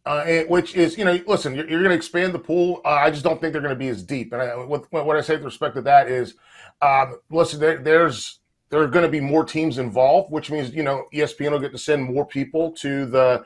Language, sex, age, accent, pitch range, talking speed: English, male, 30-49, American, 145-170 Hz, 255 wpm